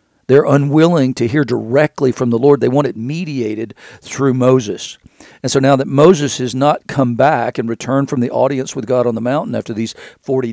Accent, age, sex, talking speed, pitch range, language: American, 50-69, male, 205 wpm, 115-140 Hz, English